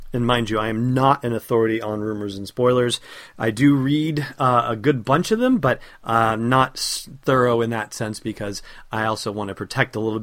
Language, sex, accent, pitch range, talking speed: English, male, American, 110-140 Hz, 210 wpm